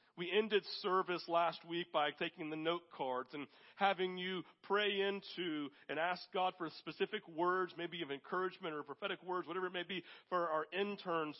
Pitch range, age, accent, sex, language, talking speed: 155-195 Hz, 40-59, American, male, English, 180 wpm